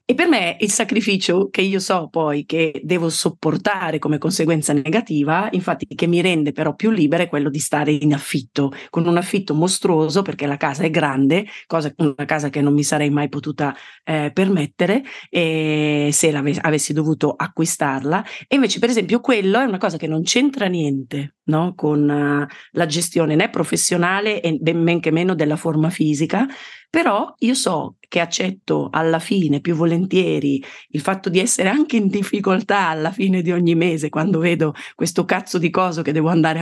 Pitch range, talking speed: 150-190 Hz, 175 wpm